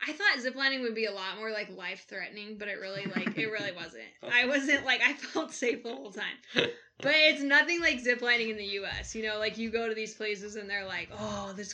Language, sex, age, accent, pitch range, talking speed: English, female, 10-29, American, 185-225 Hz, 240 wpm